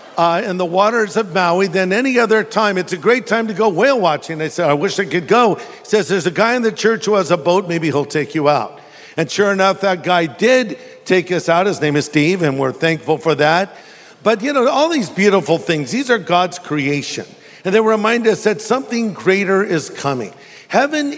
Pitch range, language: 165-205 Hz, English